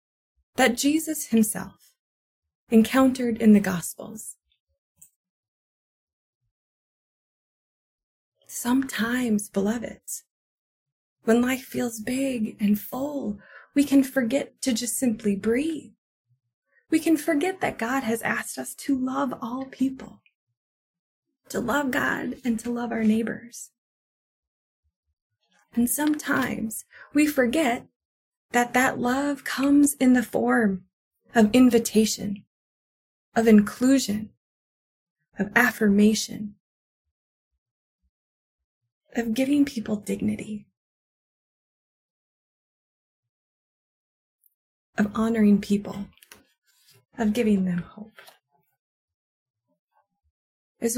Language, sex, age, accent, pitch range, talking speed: English, female, 20-39, American, 180-255 Hz, 85 wpm